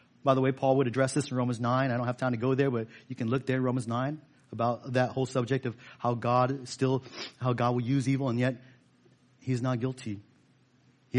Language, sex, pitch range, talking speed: English, male, 125-155 Hz, 230 wpm